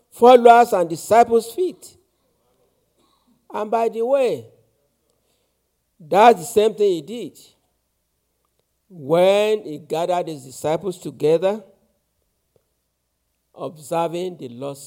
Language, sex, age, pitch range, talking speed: English, male, 60-79, 155-255 Hz, 95 wpm